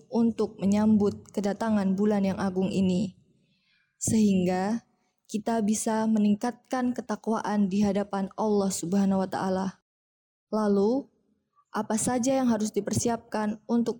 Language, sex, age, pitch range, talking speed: Indonesian, female, 20-39, 200-225 Hz, 105 wpm